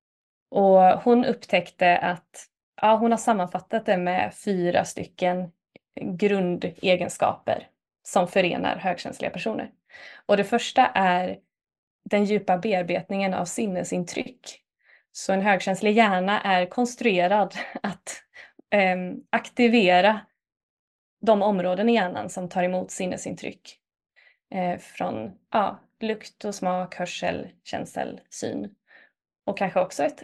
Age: 20-39